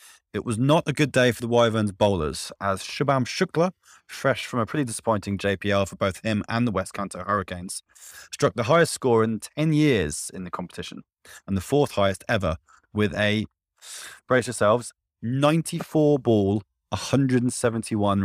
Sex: male